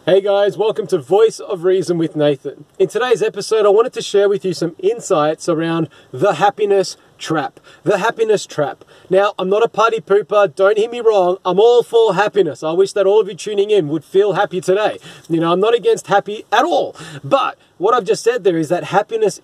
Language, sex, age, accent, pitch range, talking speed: English, male, 30-49, Australian, 180-230 Hz, 215 wpm